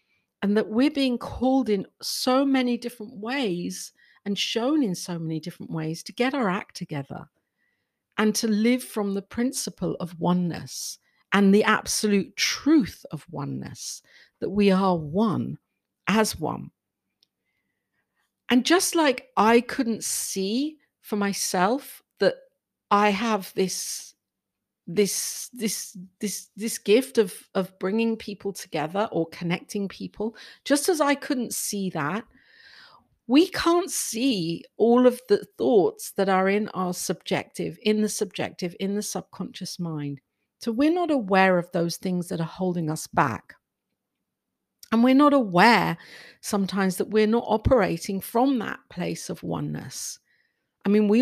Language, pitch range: English, 185-240 Hz